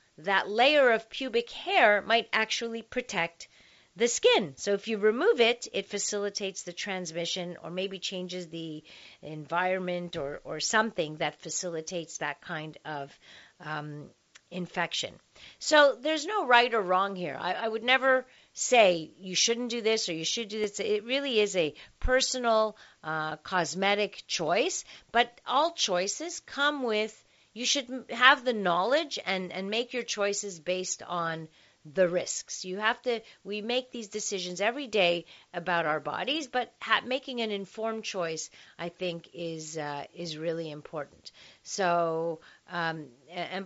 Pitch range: 170-225 Hz